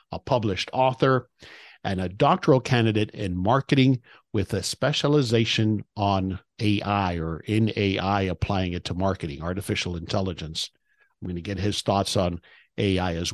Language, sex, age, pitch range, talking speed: English, male, 50-69, 95-125 Hz, 145 wpm